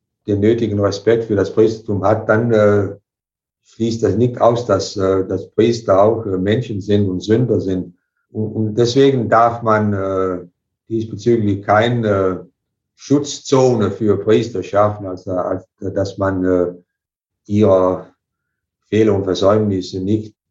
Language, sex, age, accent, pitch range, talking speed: German, male, 50-69, German, 95-110 Hz, 140 wpm